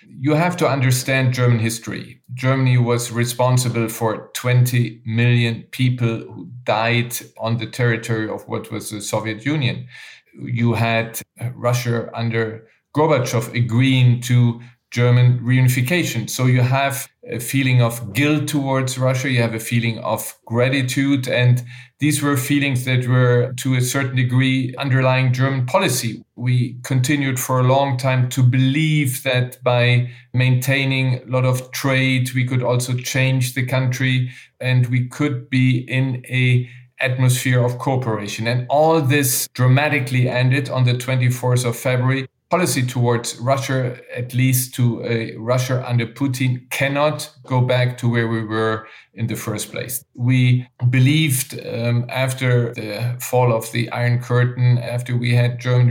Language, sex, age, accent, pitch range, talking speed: English, male, 40-59, German, 120-130 Hz, 145 wpm